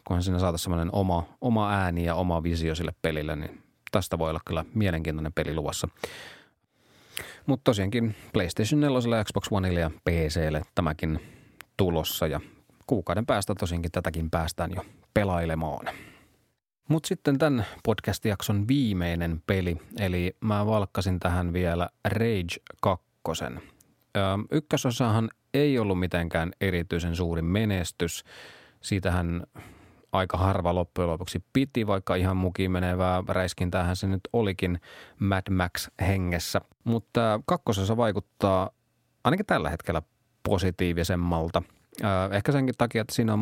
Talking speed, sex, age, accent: 120 wpm, male, 30-49, native